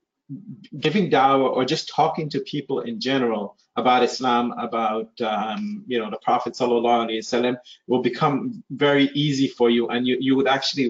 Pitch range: 120-140 Hz